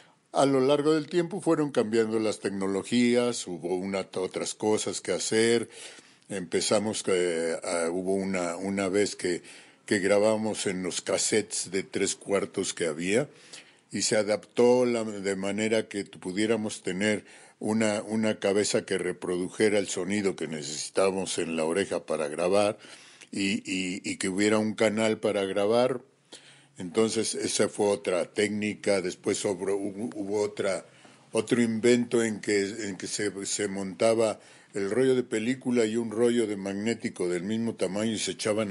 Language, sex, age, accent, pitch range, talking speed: Spanish, male, 50-69, Mexican, 100-120 Hz, 150 wpm